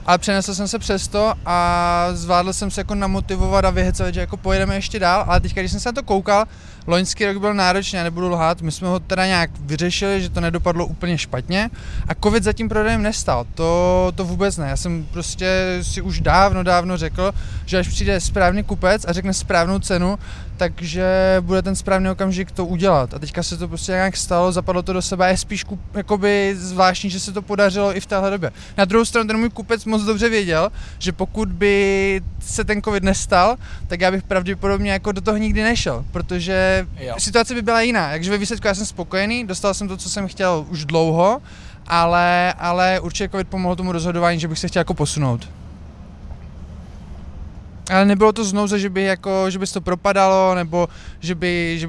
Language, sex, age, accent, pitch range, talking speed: Czech, male, 20-39, native, 175-200 Hz, 200 wpm